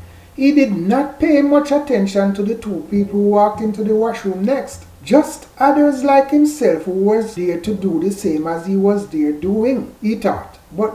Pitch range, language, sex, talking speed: 180-240 Hz, English, male, 190 wpm